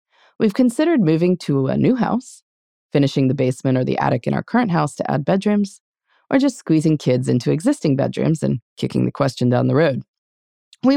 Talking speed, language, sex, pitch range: 190 wpm, English, female, 135-215 Hz